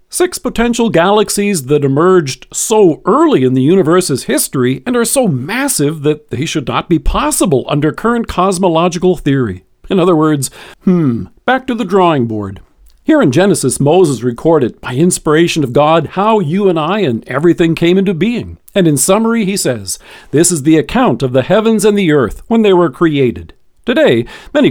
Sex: male